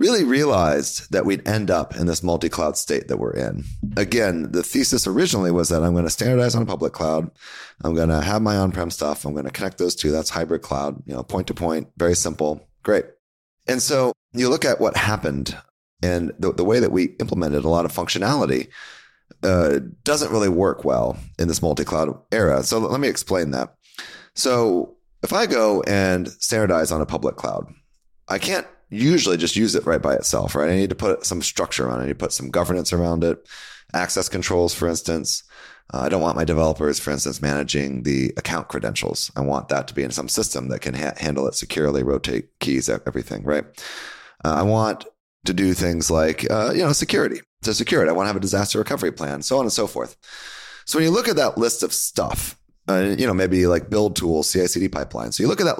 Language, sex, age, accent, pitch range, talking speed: English, male, 30-49, American, 75-95 Hz, 220 wpm